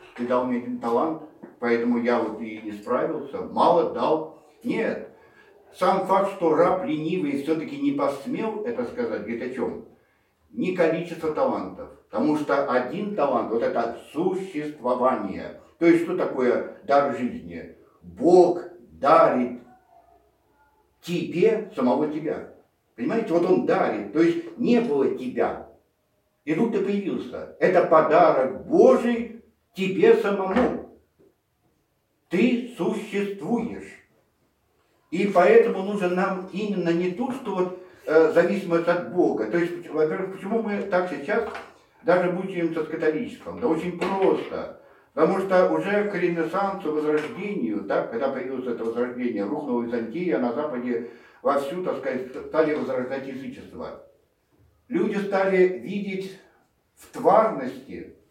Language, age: Russian, 60-79